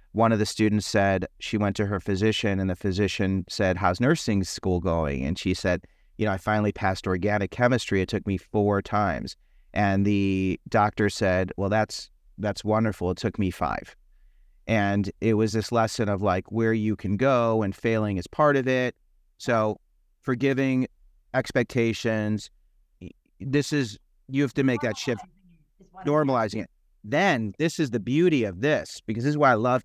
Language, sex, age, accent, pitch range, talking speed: English, male, 40-59, American, 100-130 Hz, 175 wpm